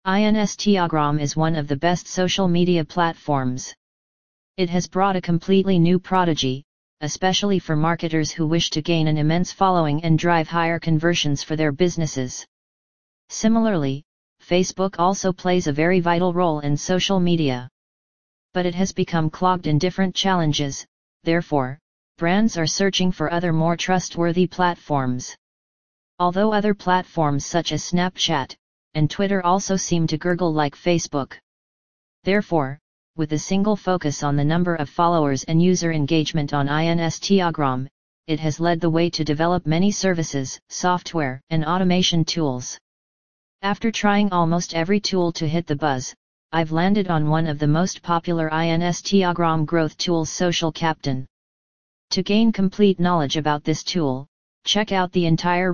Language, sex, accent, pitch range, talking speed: English, female, American, 155-180 Hz, 145 wpm